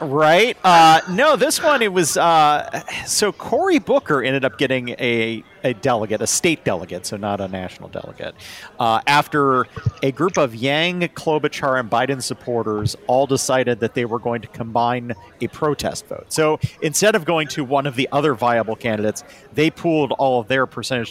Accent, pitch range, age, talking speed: American, 115-155 Hz, 40-59, 180 wpm